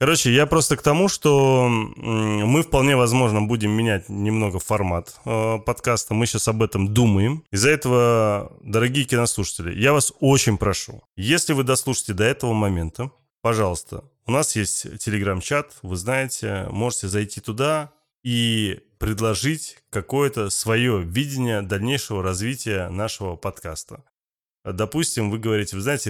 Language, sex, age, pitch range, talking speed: Russian, male, 20-39, 105-130 Hz, 130 wpm